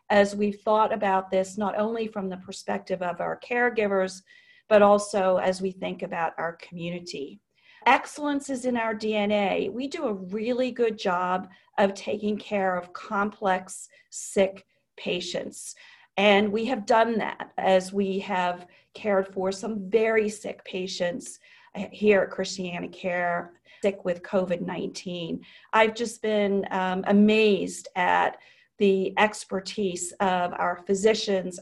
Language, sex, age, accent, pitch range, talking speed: English, female, 40-59, American, 190-225 Hz, 135 wpm